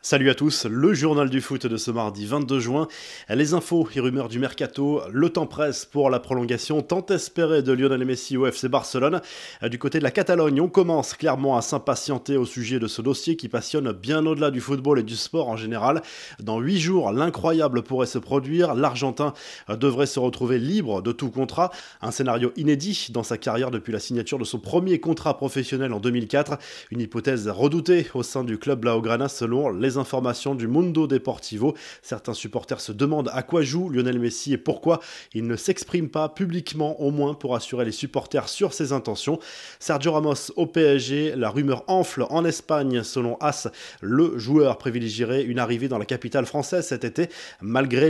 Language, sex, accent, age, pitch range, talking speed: French, male, French, 20-39, 120-155 Hz, 190 wpm